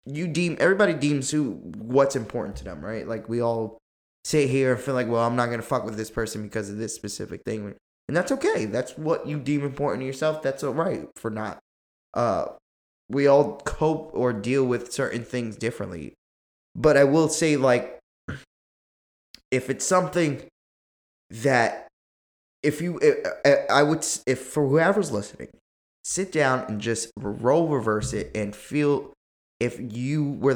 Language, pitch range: English, 110-145 Hz